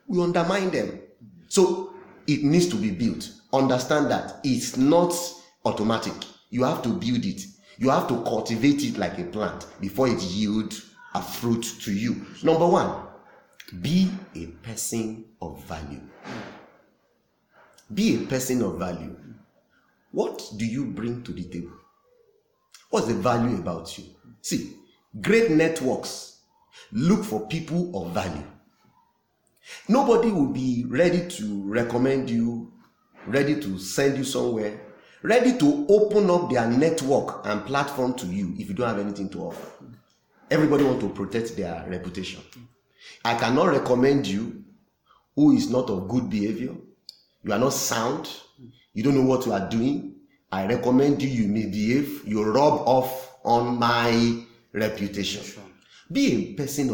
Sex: male